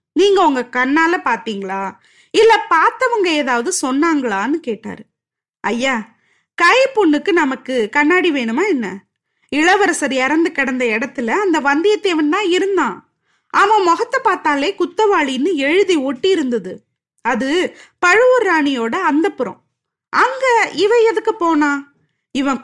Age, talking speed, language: 20-39, 100 wpm, Tamil